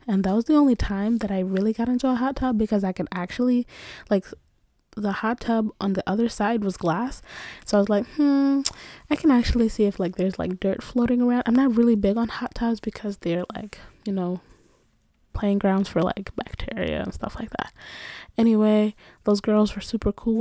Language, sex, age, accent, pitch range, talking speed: English, female, 10-29, American, 190-230 Hz, 210 wpm